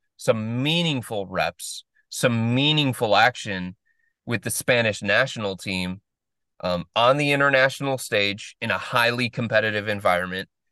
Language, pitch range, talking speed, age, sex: English, 105-125 Hz, 120 wpm, 30-49, male